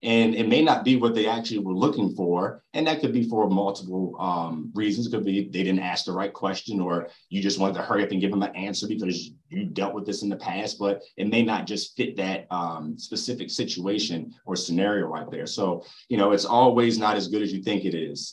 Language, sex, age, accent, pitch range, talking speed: English, male, 30-49, American, 90-105 Hz, 245 wpm